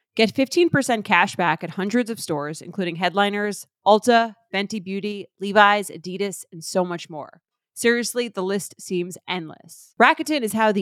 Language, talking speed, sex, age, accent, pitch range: English, 155 wpm, female, 30-49, American, 175-215 Hz